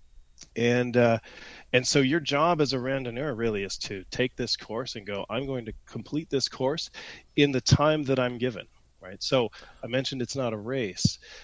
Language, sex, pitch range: English, male, 105-135 Hz